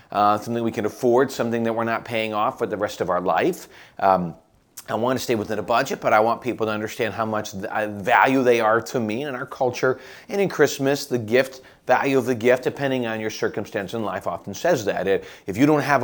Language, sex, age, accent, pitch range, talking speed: English, male, 30-49, American, 110-135 Hz, 235 wpm